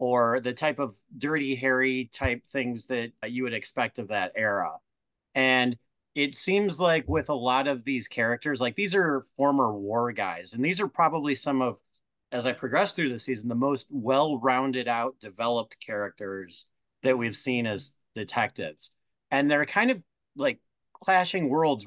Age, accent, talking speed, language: 30-49, American, 165 wpm, English